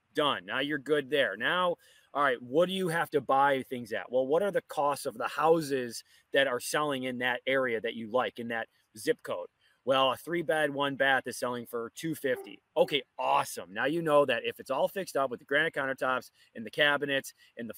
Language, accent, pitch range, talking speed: English, American, 130-185 Hz, 225 wpm